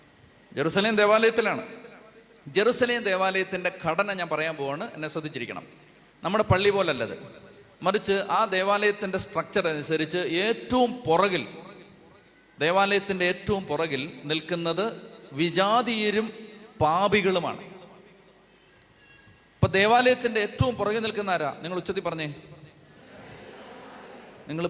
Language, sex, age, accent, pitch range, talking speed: Malayalam, male, 30-49, native, 160-215 Hz, 90 wpm